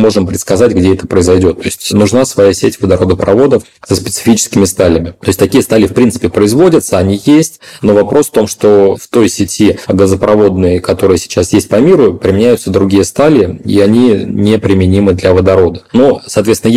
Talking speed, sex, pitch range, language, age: 170 wpm, male, 95-110 Hz, Russian, 30-49